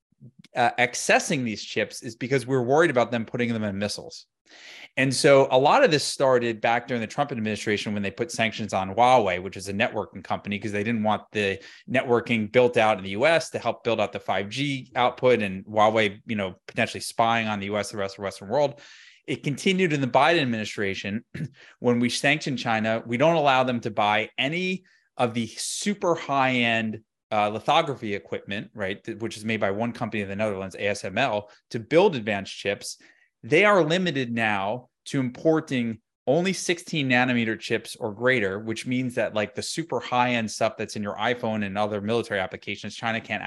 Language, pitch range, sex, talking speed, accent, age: English, 105-130 Hz, male, 195 wpm, American, 20-39